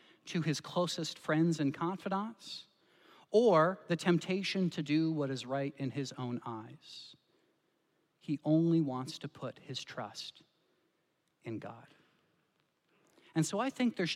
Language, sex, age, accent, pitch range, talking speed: English, male, 40-59, American, 150-210 Hz, 135 wpm